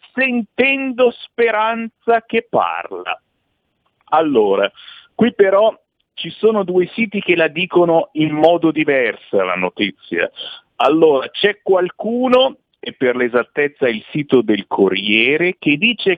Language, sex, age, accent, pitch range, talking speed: Italian, male, 50-69, native, 140-230 Hz, 115 wpm